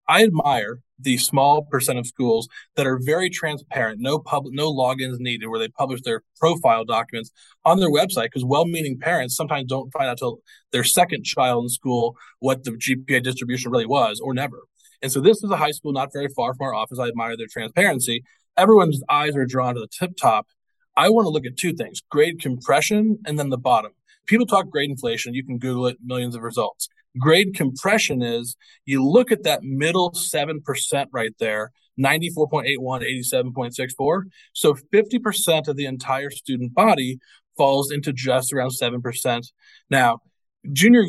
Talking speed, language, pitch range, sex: 180 wpm, English, 130-155 Hz, male